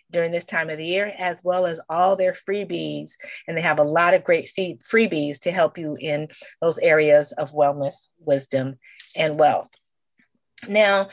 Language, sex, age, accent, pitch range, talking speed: English, female, 30-49, American, 170-200 Hz, 175 wpm